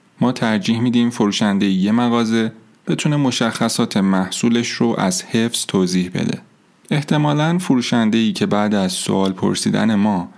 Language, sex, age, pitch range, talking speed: Persian, male, 30-49, 105-170 Hz, 125 wpm